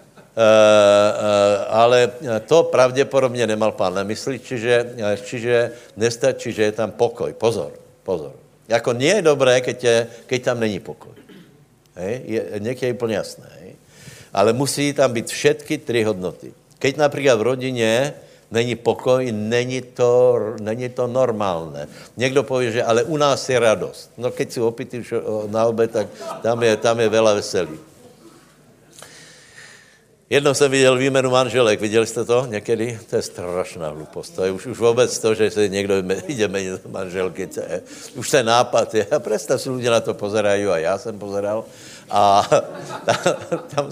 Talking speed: 160 wpm